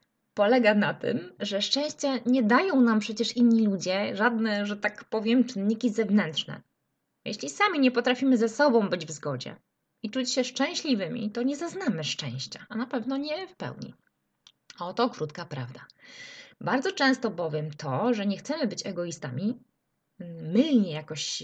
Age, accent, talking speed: 20-39, native, 150 wpm